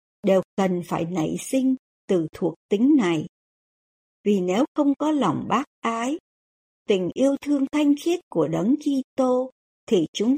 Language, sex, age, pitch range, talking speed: Vietnamese, male, 60-79, 175-265 Hz, 155 wpm